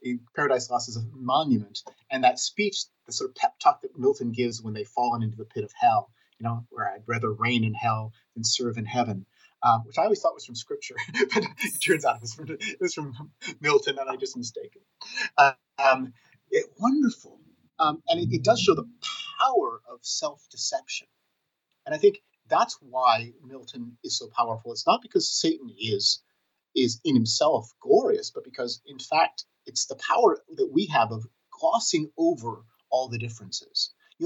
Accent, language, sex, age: American, English, male, 30-49